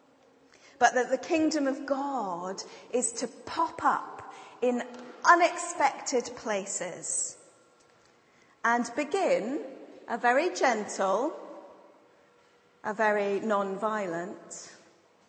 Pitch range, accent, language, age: 190-255 Hz, British, English, 40-59